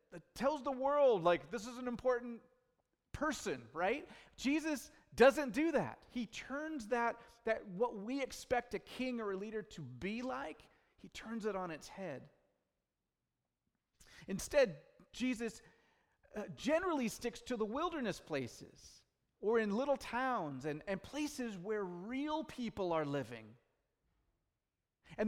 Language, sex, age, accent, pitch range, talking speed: English, male, 40-59, American, 185-250 Hz, 135 wpm